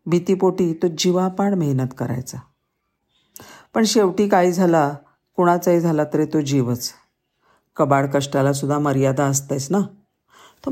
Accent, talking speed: native, 110 wpm